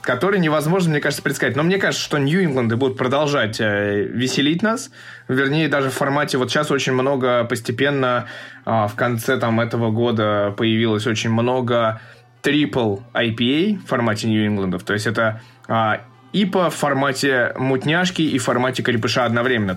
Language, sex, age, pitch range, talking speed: Russian, male, 20-39, 110-135 Hz, 150 wpm